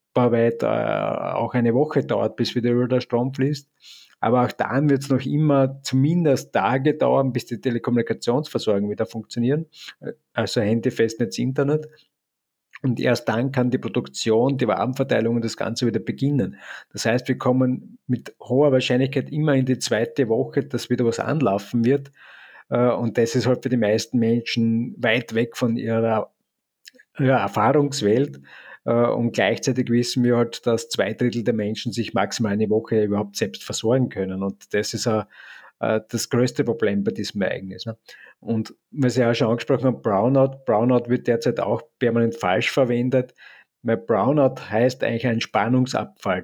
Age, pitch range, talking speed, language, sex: 50-69, 115-130 Hz, 160 wpm, German, male